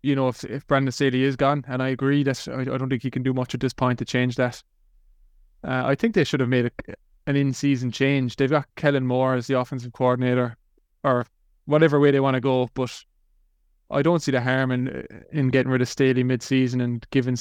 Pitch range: 125-140 Hz